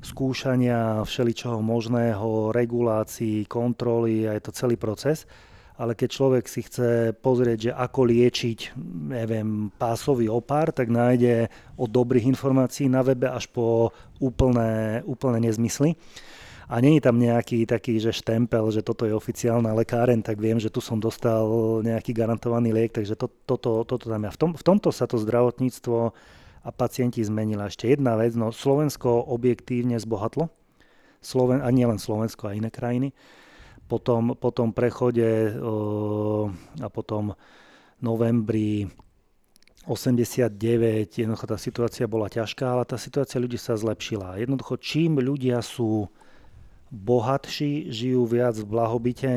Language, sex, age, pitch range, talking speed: Slovak, male, 20-39, 110-125 Hz, 140 wpm